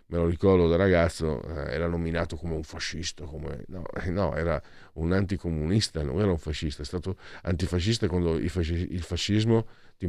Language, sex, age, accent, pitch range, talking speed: Italian, male, 50-69, native, 85-110 Hz, 160 wpm